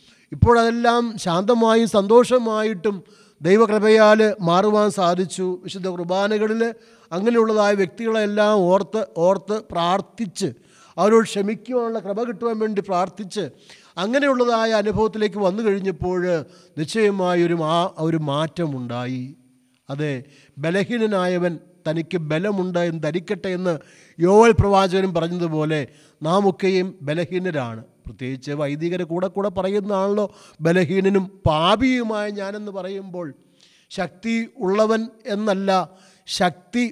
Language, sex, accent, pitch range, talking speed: Malayalam, male, native, 175-220 Hz, 85 wpm